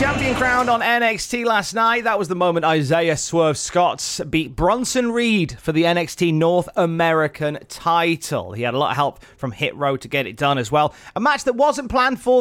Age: 30-49